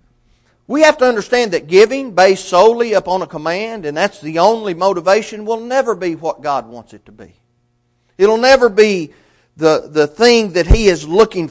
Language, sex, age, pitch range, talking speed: English, male, 40-59, 155-225 Hz, 190 wpm